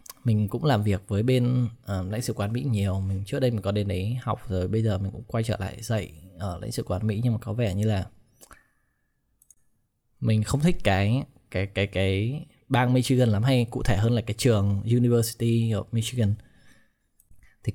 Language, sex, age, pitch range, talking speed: Vietnamese, male, 20-39, 105-125 Hz, 205 wpm